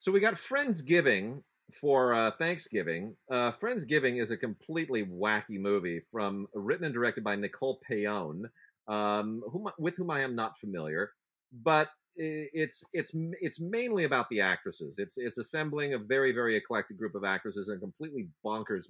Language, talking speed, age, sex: English, 160 wpm, 30-49, male